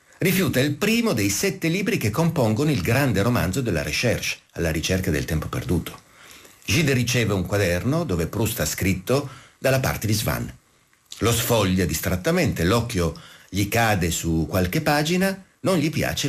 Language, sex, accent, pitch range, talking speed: Italian, male, native, 100-145 Hz, 155 wpm